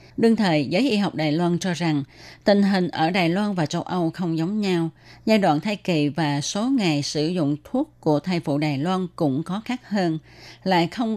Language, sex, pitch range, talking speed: Vietnamese, female, 150-195 Hz, 220 wpm